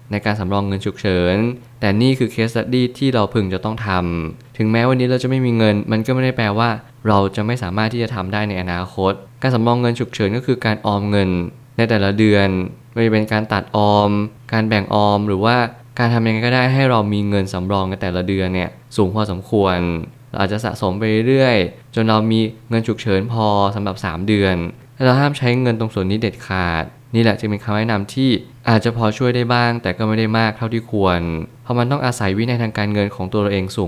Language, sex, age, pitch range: Thai, male, 20-39, 100-120 Hz